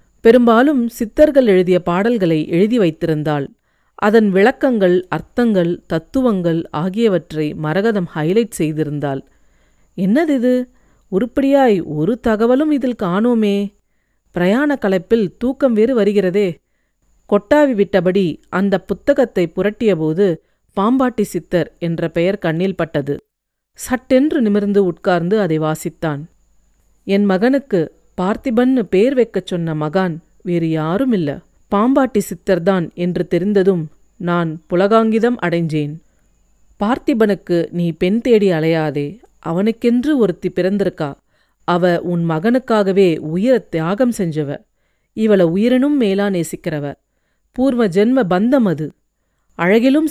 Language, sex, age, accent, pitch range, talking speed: Tamil, female, 40-59, native, 170-235 Hz, 90 wpm